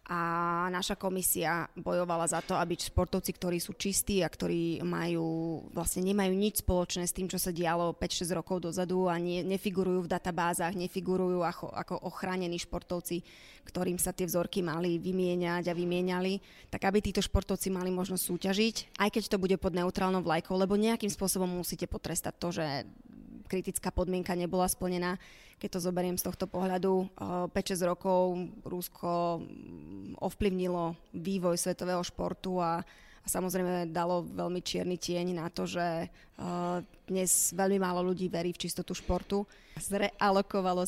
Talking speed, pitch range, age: 145 wpm, 175-190 Hz, 20-39